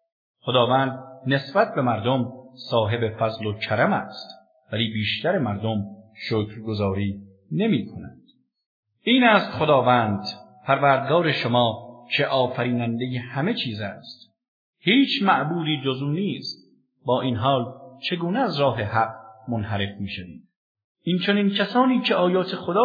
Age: 50-69